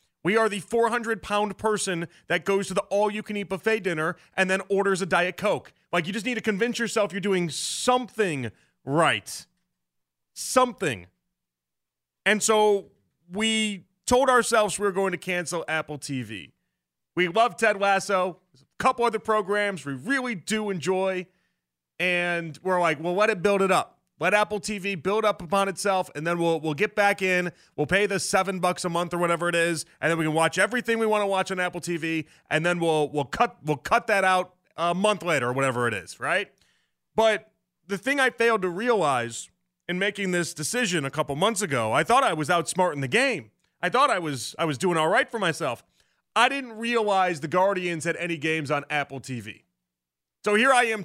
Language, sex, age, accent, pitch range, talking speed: English, male, 30-49, American, 160-210 Hz, 195 wpm